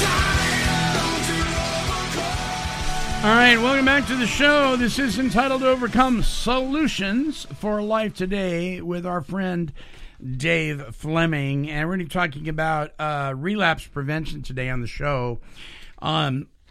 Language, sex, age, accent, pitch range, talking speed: English, male, 50-69, American, 130-170 Hz, 130 wpm